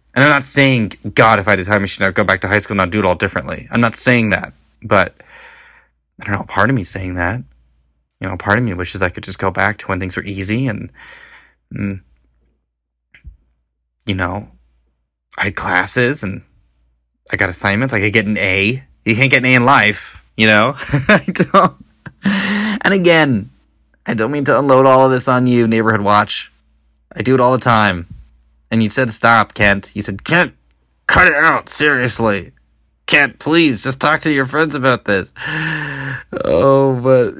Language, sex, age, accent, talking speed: English, male, 20-39, American, 190 wpm